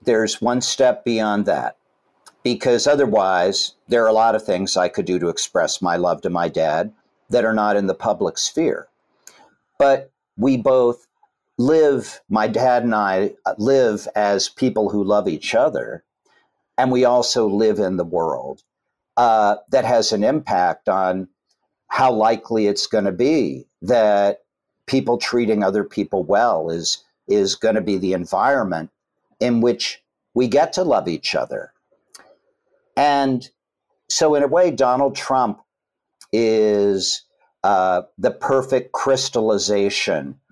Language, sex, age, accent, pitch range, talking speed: English, male, 50-69, American, 105-130 Hz, 140 wpm